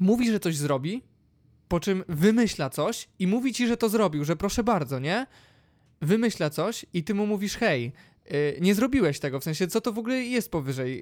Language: Polish